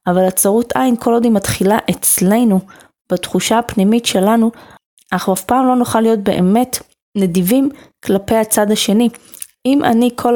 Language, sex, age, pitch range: Hebrew, female, 20-39, 190-245 Hz